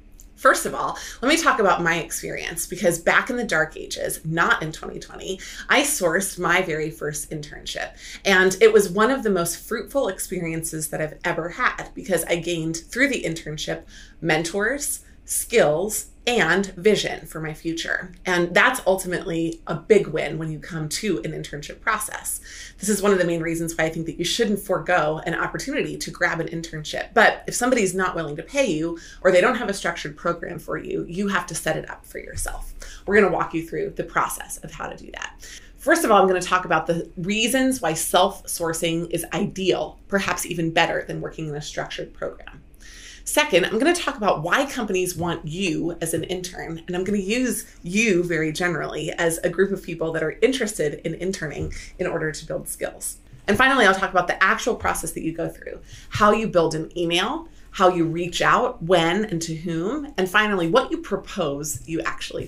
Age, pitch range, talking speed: 30-49, 165-195 Hz, 205 wpm